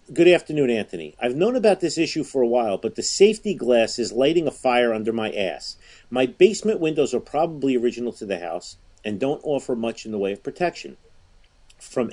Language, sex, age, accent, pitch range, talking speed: English, male, 50-69, American, 110-140 Hz, 205 wpm